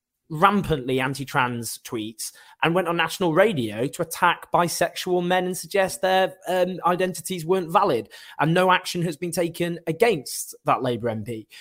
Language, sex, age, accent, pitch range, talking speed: English, male, 20-39, British, 125-180 Hz, 150 wpm